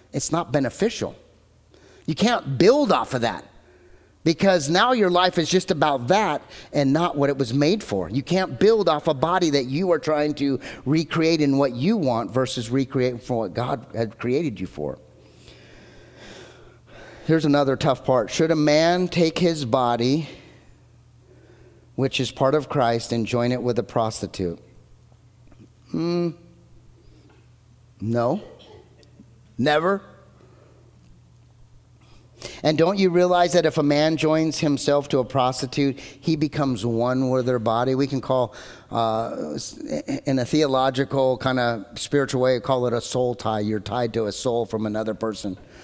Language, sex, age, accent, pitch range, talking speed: English, male, 40-59, American, 120-155 Hz, 155 wpm